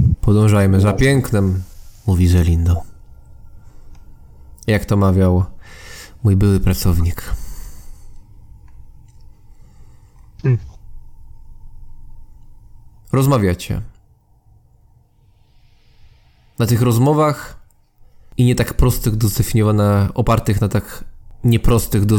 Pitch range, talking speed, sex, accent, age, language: 100-115 Hz, 70 wpm, male, Polish, 20-39, English